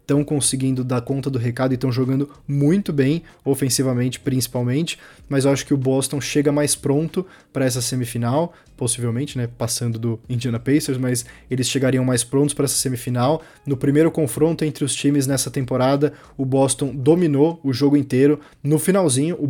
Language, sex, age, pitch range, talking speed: Portuguese, male, 20-39, 125-145 Hz, 170 wpm